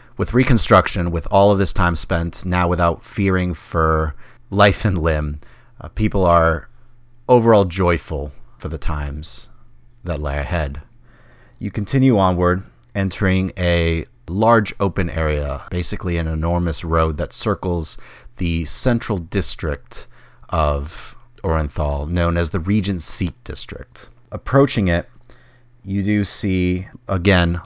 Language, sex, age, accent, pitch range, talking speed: English, male, 30-49, American, 80-100 Hz, 125 wpm